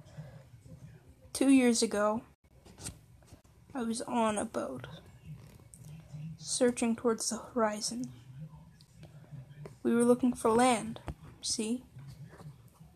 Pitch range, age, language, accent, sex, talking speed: 145-235 Hz, 10-29, English, American, female, 85 wpm